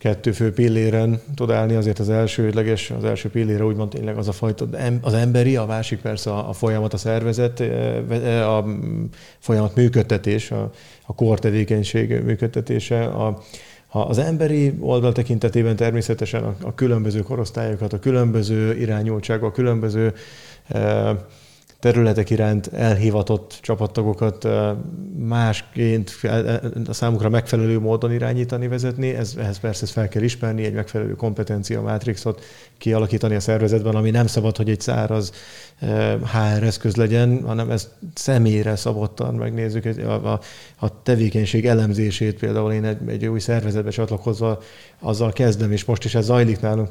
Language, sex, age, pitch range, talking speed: Hungarian, male, 30-49, 110-120 Hz, 140 wpm